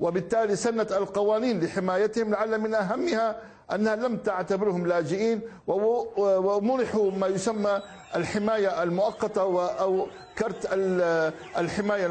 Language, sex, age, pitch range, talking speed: Arabic, male, 60-79, 195-230 Hz, 95 wpm